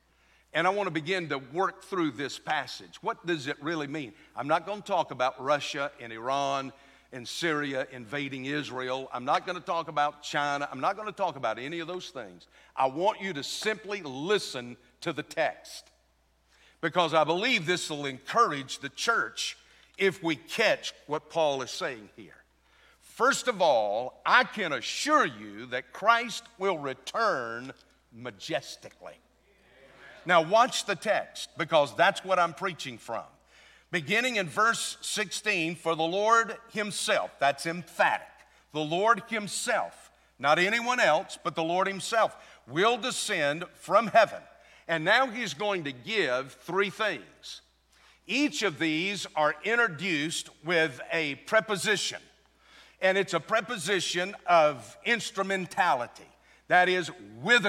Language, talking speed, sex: English, 145 wpm, male